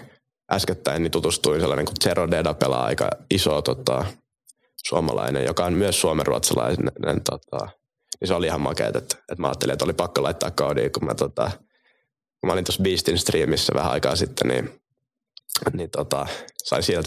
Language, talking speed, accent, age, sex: Finnish, 160 wpm, native, 20-39, male